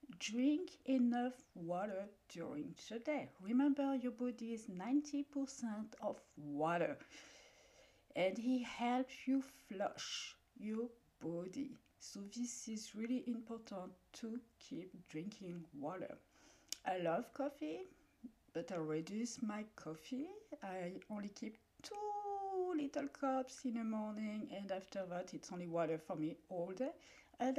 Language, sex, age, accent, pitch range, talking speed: English, female, 50-69, French, 190-260 Hz, 125 wpm